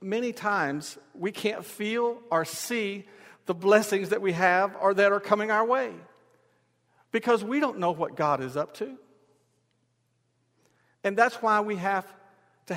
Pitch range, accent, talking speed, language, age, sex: 150-200 Hz, American, 155 wpm, English, 50-69, male